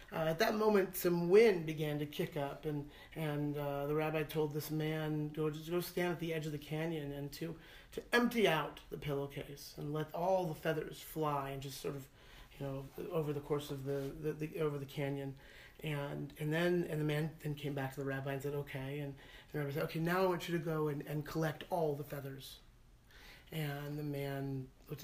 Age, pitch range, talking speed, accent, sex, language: 40-59, 140-170 Hz, 225 wpm, American, male, English